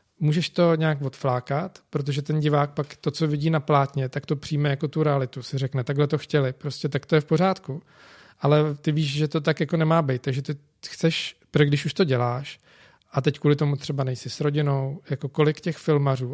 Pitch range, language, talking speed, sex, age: 140-155 Hz, Czech, 215 wpm, male, 40-59